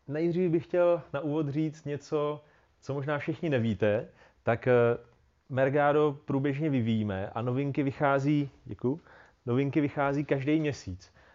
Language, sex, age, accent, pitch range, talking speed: Czech, male, 30-49, native, 115-145 Hz, 120 wpm